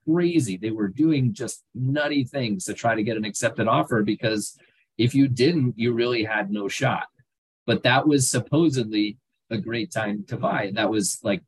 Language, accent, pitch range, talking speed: English, American, 105-135 Hz, 185 wpm